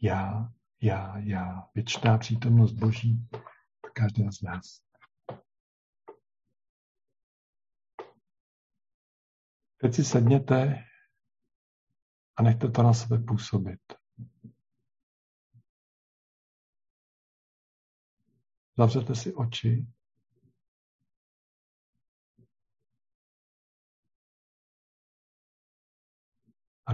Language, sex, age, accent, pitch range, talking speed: Czech, male, 50-69, native, 100-120 Hz, 50 wpm